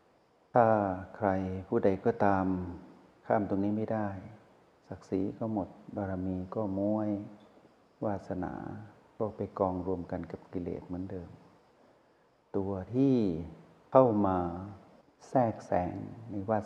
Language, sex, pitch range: Thai, male, 90-110 Hz